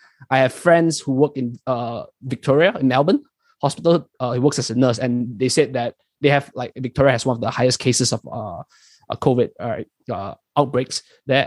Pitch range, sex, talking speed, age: 125-145 Hz, male, 205 wpm, 20-39